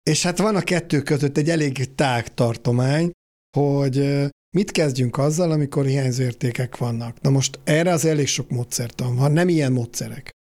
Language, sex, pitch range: Hungarian, male, 125-150 Hz